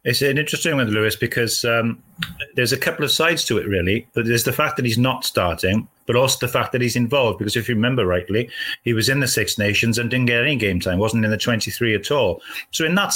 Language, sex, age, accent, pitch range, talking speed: English, male, 30-49, British, 110-125 Hz, 260 wpm